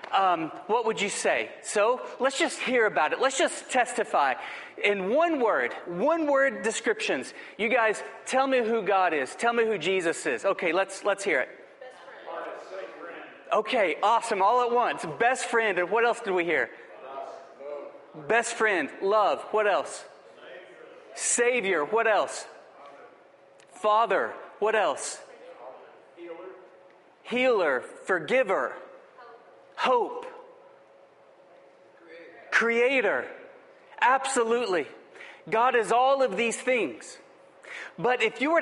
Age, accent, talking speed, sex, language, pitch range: 40-59, American, 120 wpm, male, English, 200-300 Hz